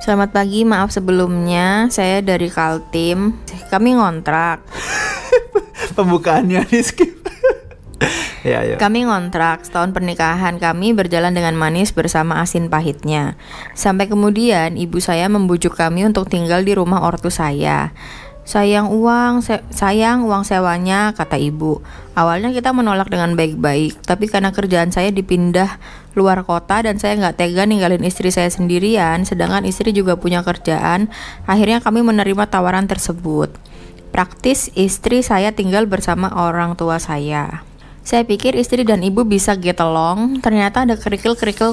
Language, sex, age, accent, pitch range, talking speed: Indonesian, female, 20-39, native, 170-210 Hz, 135 wpm